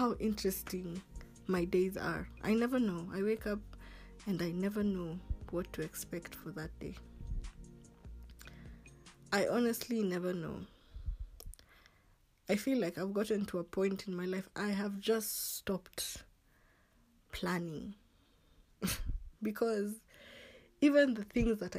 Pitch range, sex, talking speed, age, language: 170-215 Hz, female, 125 wpm, 20-39, English